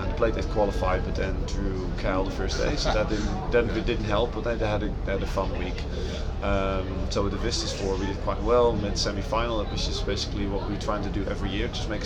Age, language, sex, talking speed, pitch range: 20-39, English, male, 255 wpm, 90-105 Hz